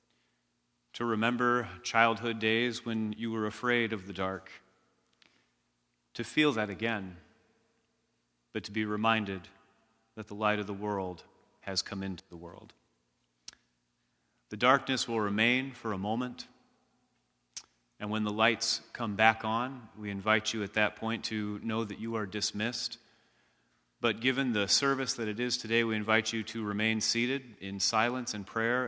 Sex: male